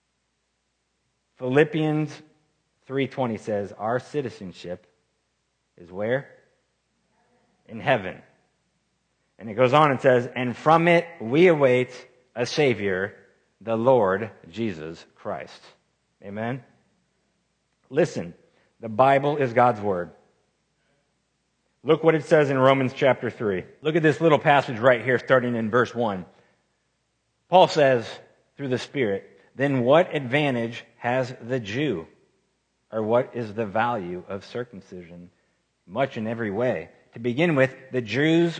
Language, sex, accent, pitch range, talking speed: English, male, American, 110-140 Hz, 125 wpm